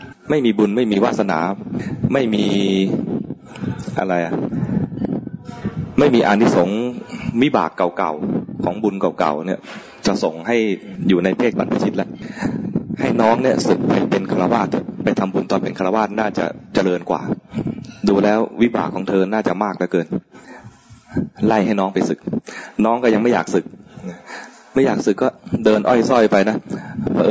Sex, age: male, 20-39